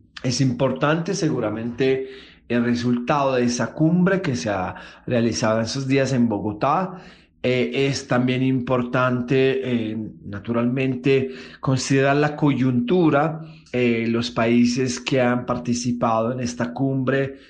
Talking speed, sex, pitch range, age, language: 120 wpm, male, 120-135 Hz, 30-49, Spanish